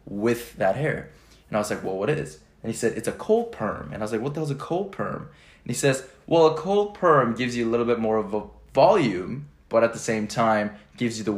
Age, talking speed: 20-39, 270 wpm